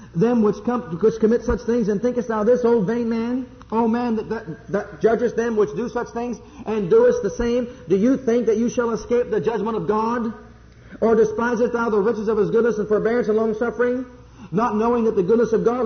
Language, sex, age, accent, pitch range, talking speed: English, male, 50-69, American, 210-245 Hz, 215 wpm